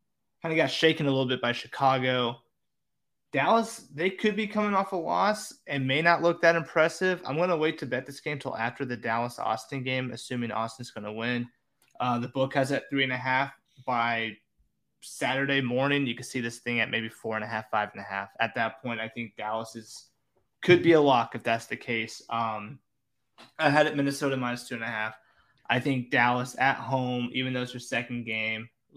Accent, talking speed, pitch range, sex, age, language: American, 205 wpm, 115-135 Hz, male, 20-39, English